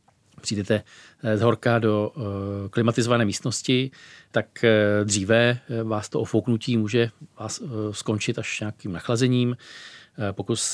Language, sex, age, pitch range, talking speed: Czech, male, 40-59, 100-115 Hz, 100 wpm